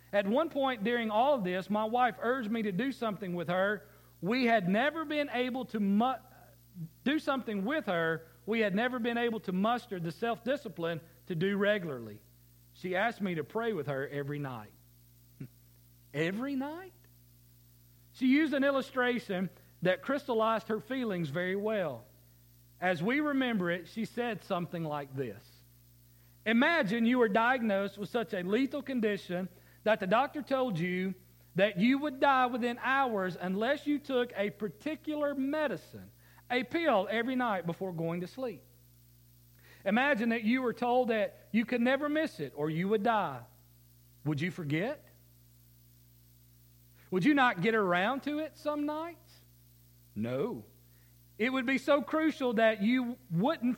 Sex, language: male, English